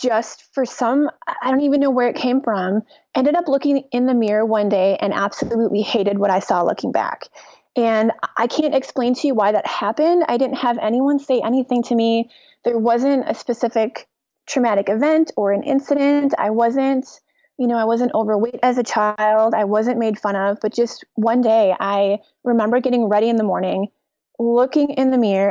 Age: 30-49